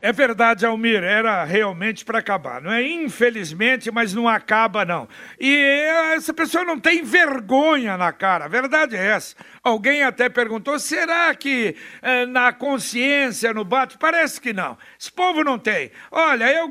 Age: 60-79